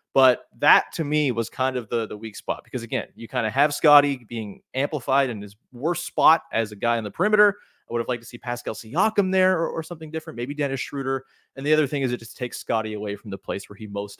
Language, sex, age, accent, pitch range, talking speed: English, male, 30-49, American, 110-140 Hz, 260 wpm